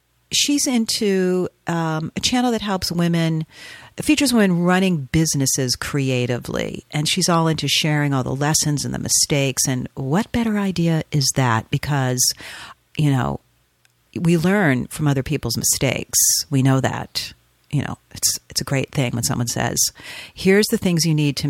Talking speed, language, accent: 160 wpm, English, American